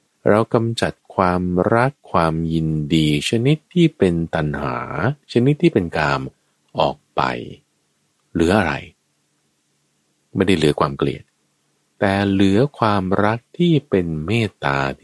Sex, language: male, Thai